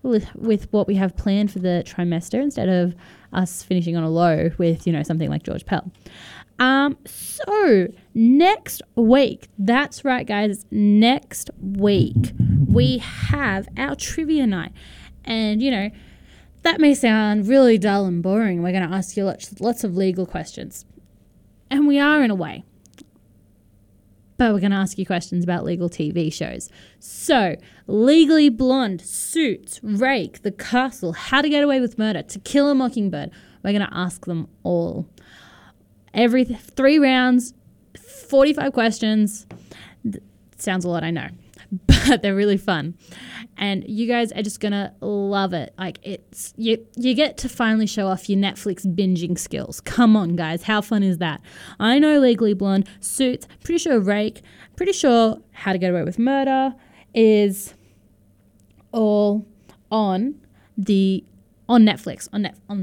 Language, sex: English, female